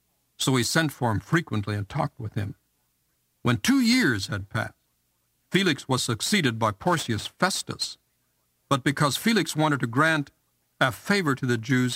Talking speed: 160 wpm